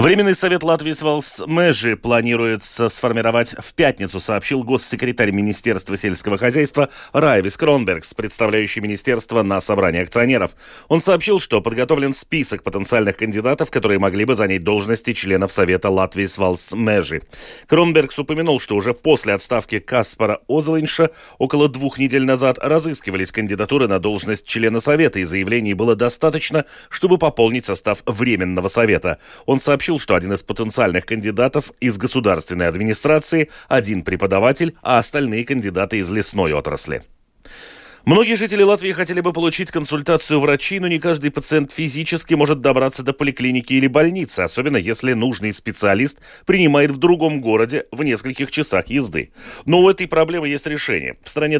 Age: 30-49